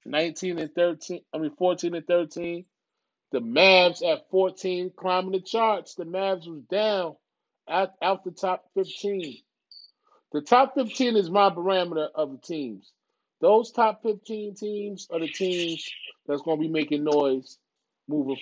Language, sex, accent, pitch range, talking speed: English, male, American, 160-220 Hz, 155 wpm